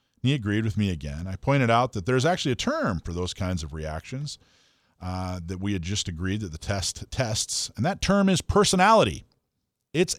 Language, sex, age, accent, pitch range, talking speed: English, male, 40-59, American, 95-130 Hz, 200 wpm